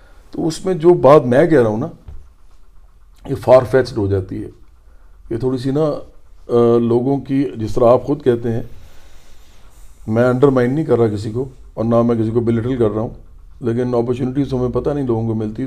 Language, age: Urdu, 40-59